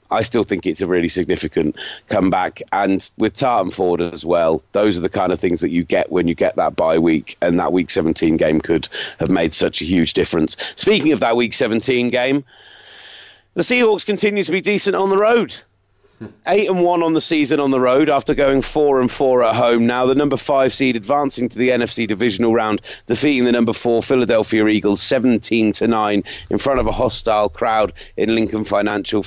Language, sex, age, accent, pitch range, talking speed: English, male, 30-49, British, 110-140 Hz, 205 wpm